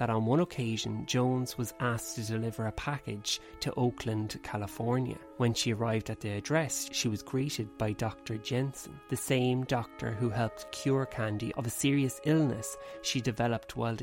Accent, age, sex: Irish, 30-49, male